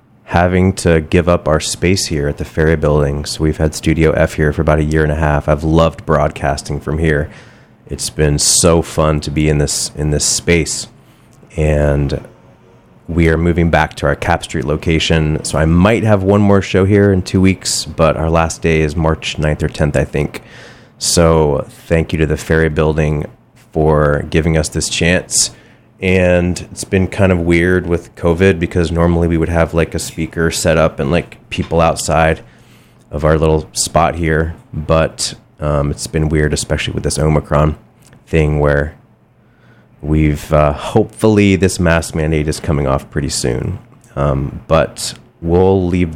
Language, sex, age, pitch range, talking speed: English, male, 30-49, 75-85 Hz, 180 wpm